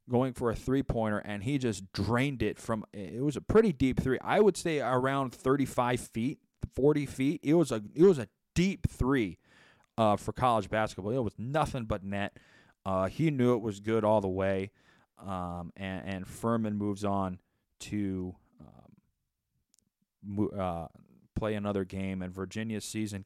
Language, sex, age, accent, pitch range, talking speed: English, male, 30-49, American, 95-115 Hz, 170 wpm